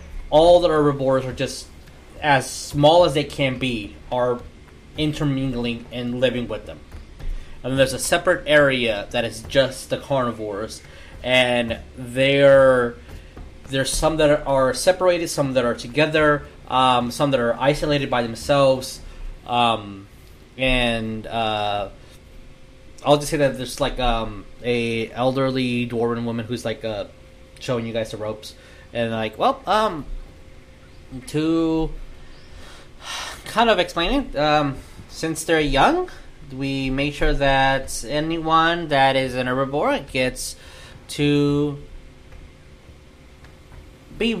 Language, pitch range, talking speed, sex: English, 110-140 Hz, 125 wpm, male